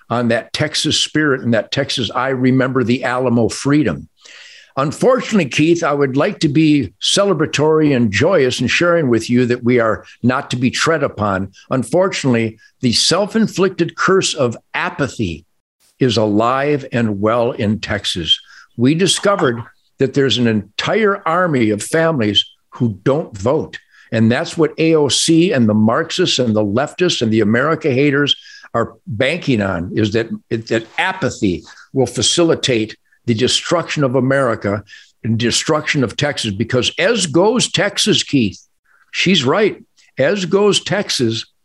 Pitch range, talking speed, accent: 120-175 Hz, 145 wpm, American